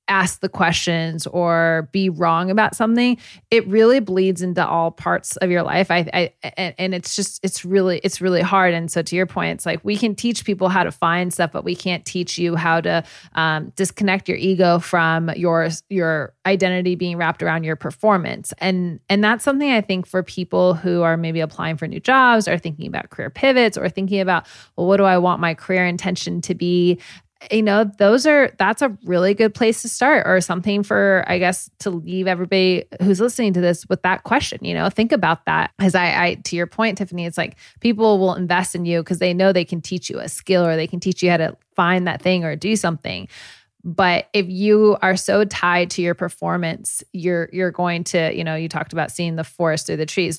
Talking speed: 220 wpm